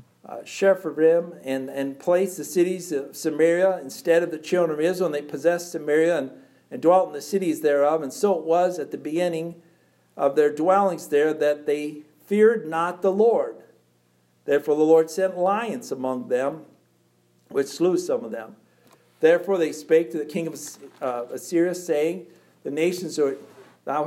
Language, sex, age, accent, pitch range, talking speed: English, male, 50-69, American, 150-185 Hz, 165 wpm